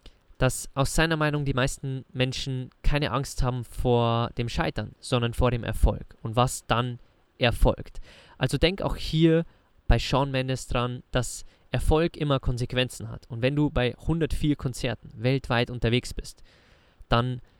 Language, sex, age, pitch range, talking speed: German, male, 20-39, 115-140 Hz, 150 wpm